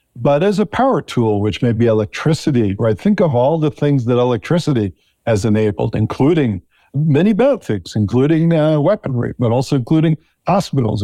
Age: 50-69